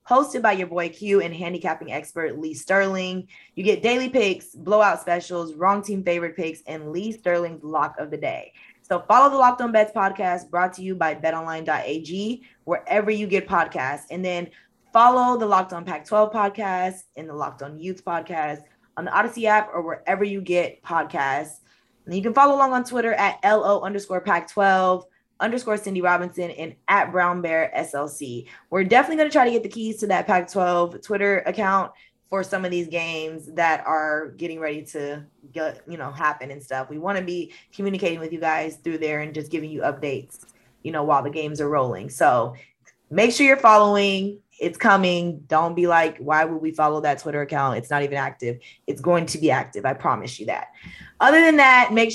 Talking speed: 200 wpm